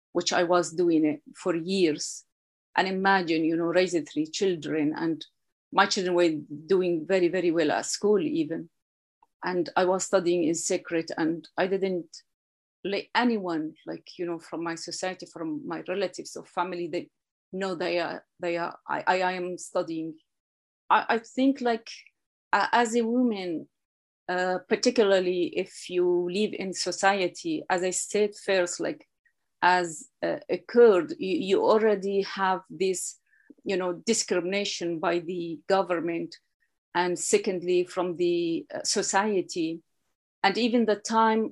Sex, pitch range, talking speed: female, 170-205 Hz, 140 wpm